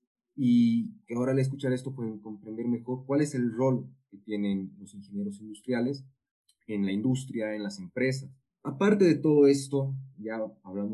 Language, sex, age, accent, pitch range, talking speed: Spanish, male, 30-49, Mexican, 100-130 Hz, 160 wpm